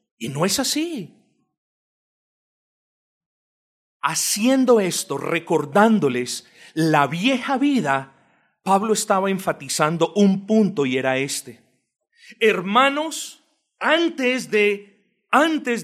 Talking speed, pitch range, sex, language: 85 wpm, 205-285 Hz, male, Spanish